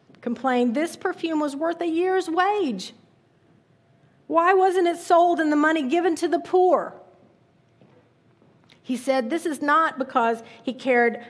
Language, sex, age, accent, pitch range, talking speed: English, female, 50-69, American, 215-275 Hz, 145 wpm